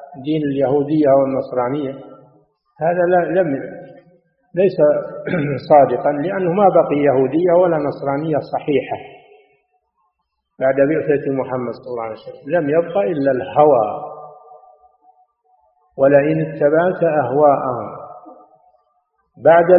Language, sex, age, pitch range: Arabic, male, 50-69, 135-175 Hz